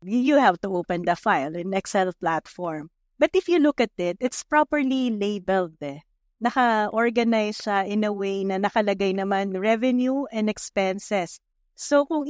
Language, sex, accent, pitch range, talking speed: Filipino, female, native, 190-245 Hz, 155 wpm